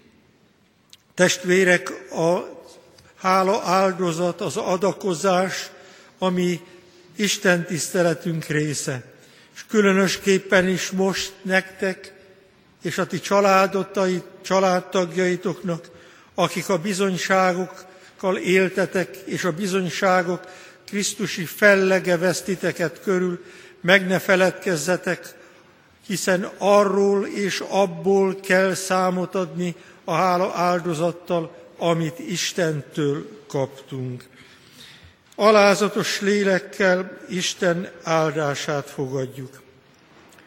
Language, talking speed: Hungarian, 75 wpm